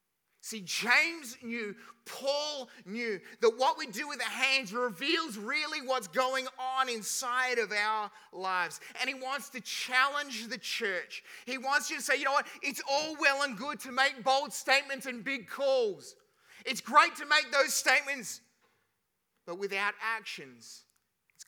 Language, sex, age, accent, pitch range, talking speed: English, male, 30-49, Australian, 225-290 Hz, 160 wpm